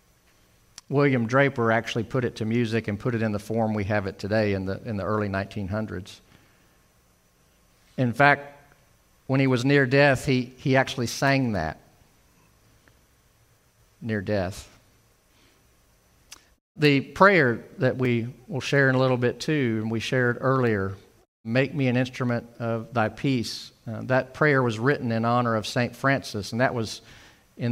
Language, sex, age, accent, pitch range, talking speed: English, male, 50-69, American, 110-135 Hz, 160 wpm